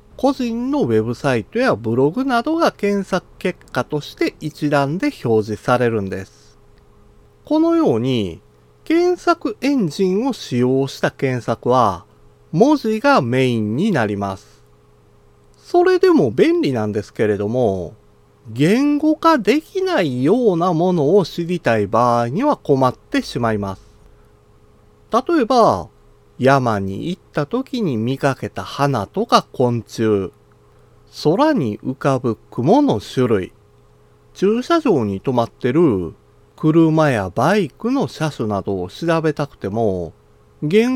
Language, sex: Japanese, male